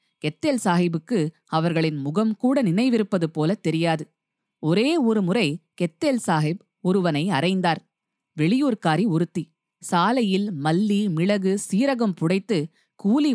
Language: Tamil